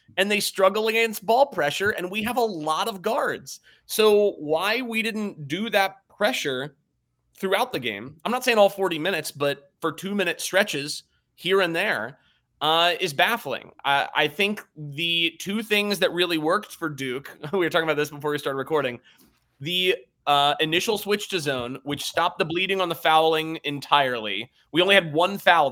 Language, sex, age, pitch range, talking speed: English, male, 30-49, 145-190 Hz, 185 wpm